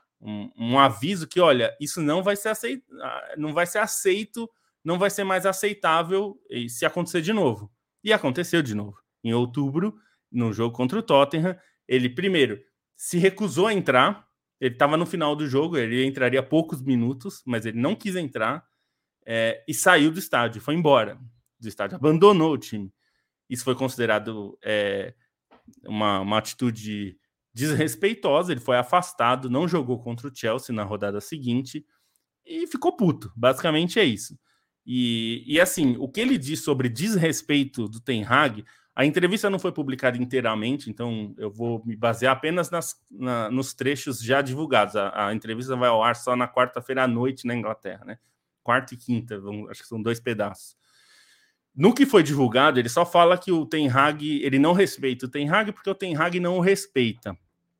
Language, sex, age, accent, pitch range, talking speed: Portuguese, male, 20-39, Brazilian, 120-175 Hz, 175 wpm